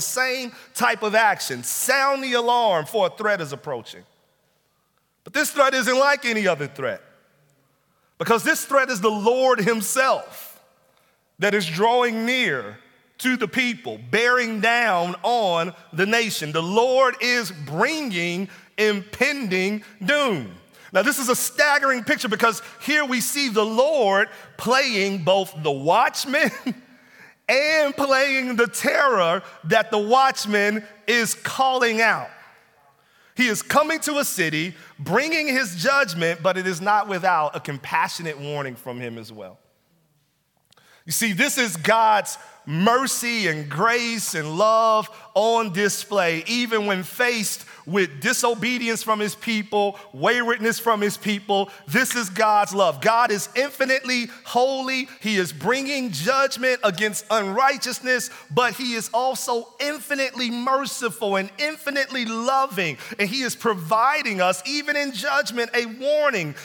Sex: male